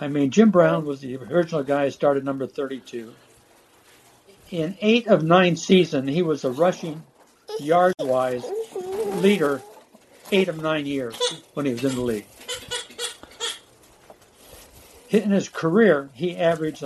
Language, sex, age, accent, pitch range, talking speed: English, male, 60-79, American, 140-190 Hz, 135 wpm